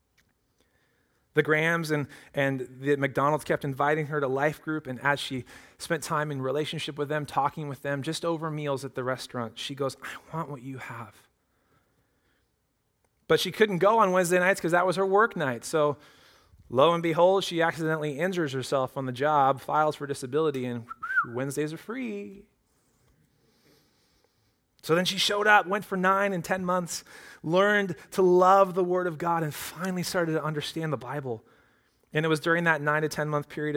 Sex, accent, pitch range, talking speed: male, American, 135-170 Hz, 185 wpm